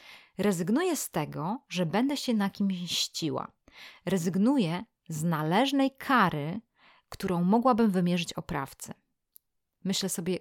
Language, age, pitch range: Polish, 30-49, 170-205 Hz